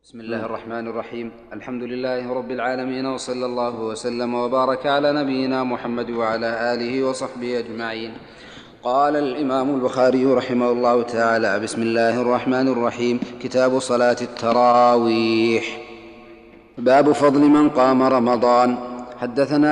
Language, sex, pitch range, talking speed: Arabic, male, 115-130 Hz, 115 wpm